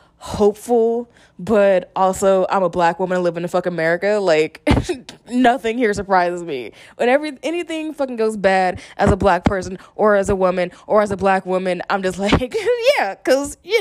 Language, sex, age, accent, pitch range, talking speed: English, female, 20-39, American, 185-245 Hz, 185 wpm